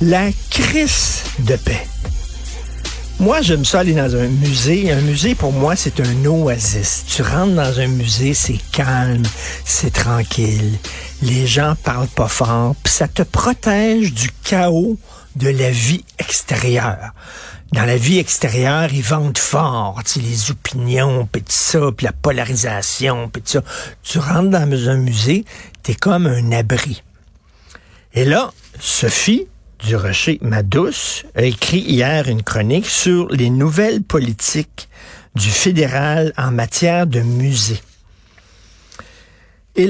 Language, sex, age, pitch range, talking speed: French, male, 60-79, 115-155 Hz, 140 wpm